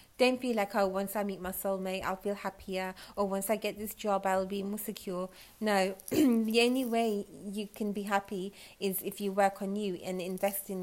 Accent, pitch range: British, 195-220 Hz